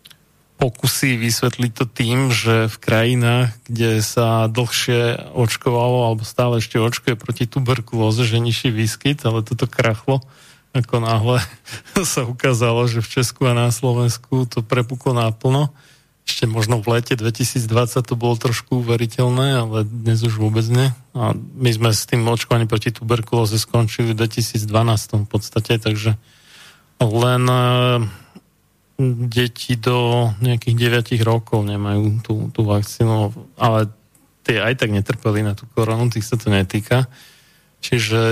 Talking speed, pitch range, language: 135 wpm, 110-125 Hz, Slovak